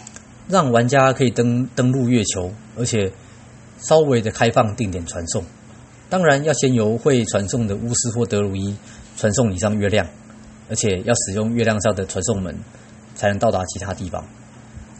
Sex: male